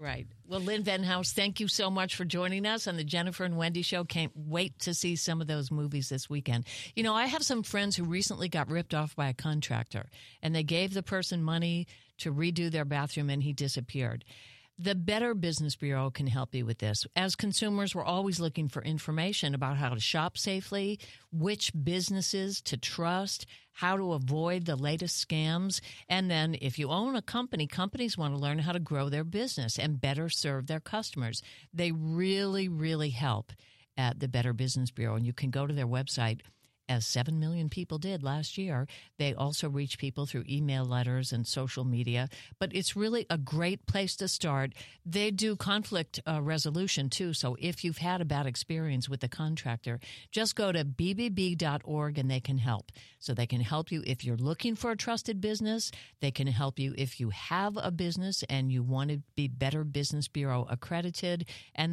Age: 60-79